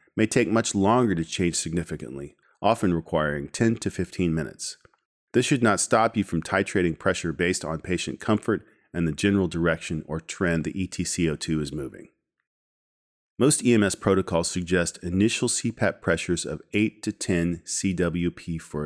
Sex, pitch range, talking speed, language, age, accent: male, 80-110 Hz, 155 wpm, English, 40-59, American